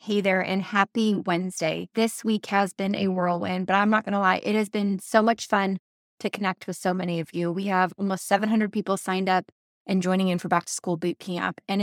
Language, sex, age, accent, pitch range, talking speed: English, female, 20-39, American, 180-215 Hz, 240 wpm